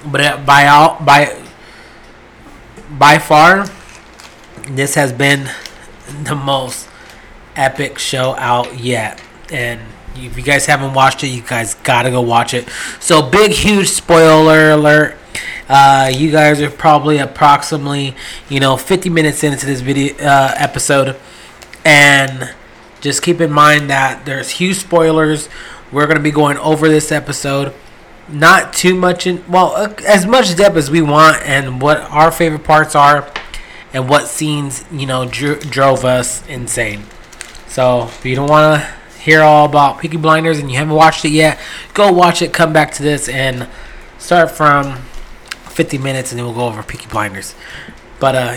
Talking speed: 160 wpm